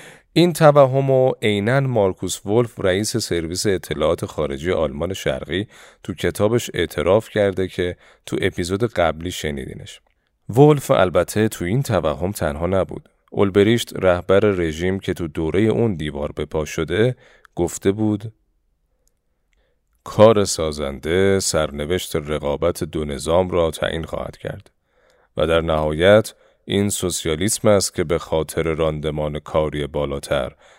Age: 40-59